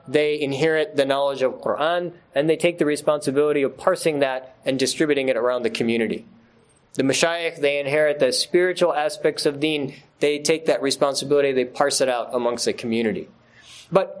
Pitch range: 145-200 Hz